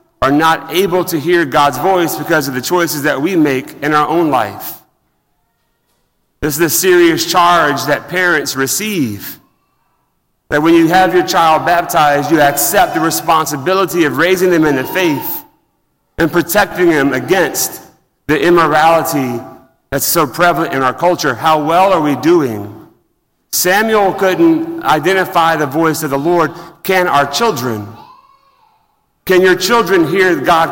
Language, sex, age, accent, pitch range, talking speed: English, male, 40-59, American, 140-175 Hz, 150 wpm